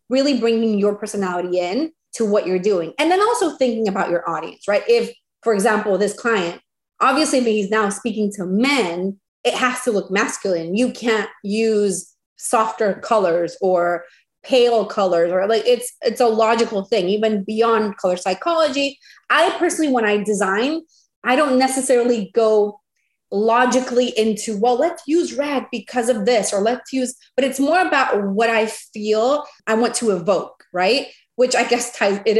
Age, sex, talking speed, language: 30-49, female, 165 wpm, English